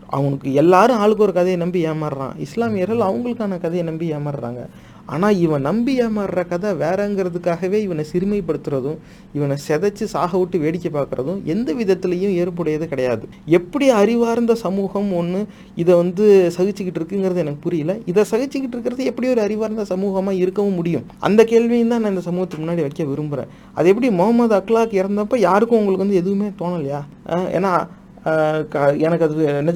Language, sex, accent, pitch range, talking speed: English, male, Indian, 155-200 Hz, 125 wpm